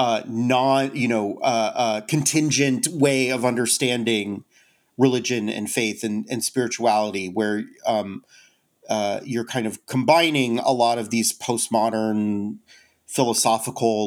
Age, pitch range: 40-59, 110-140 Hz